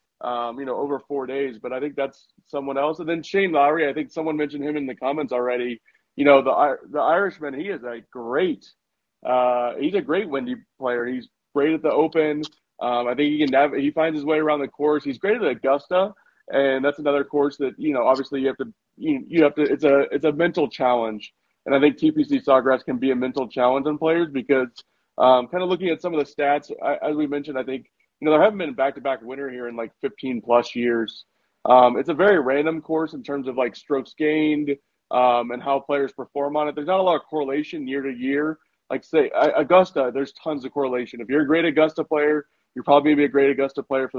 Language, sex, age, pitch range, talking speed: English, male, 30-49, 130-155 Hz, 235 wpm